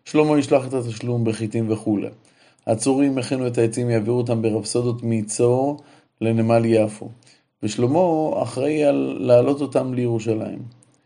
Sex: male